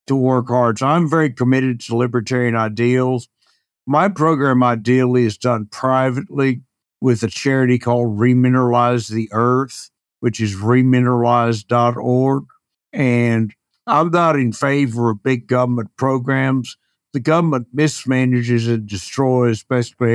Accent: American